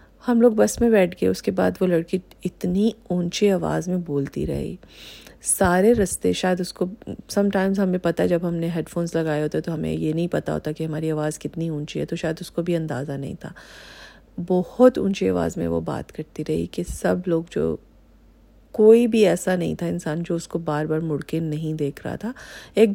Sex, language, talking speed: female, Urdu, 215 wpm